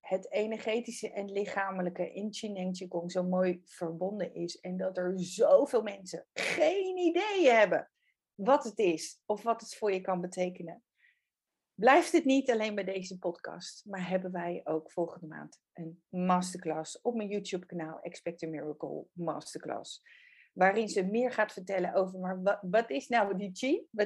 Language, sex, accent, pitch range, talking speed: Dutch, female, Dutch, 180-250 Hz, 165 wpm